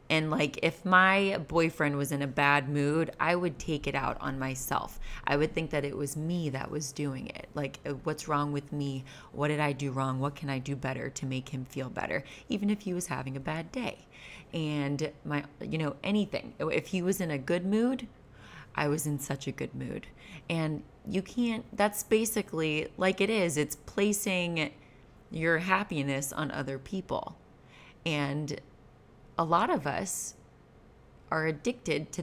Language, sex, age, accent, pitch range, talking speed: English, female, 20-39, American, 145-175 Hz, 180 wpm